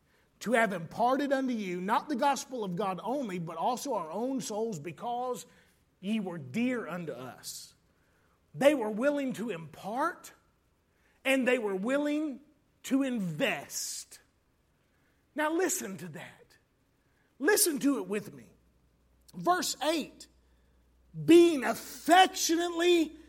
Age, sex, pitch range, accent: 40-59, male, 210-315 Hz, American